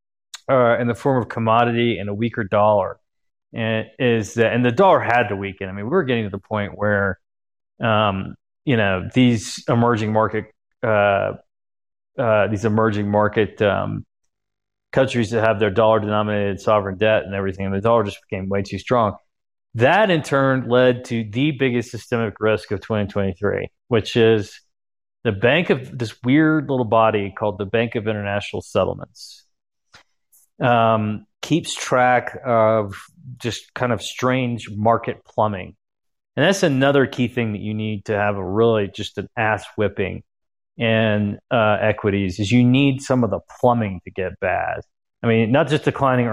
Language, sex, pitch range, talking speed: English, male, 105-120 Hz, 165 wpm